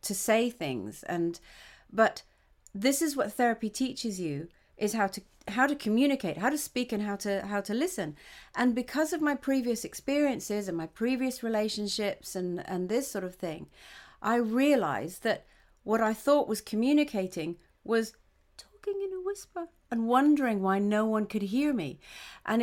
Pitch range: 195-255 Hz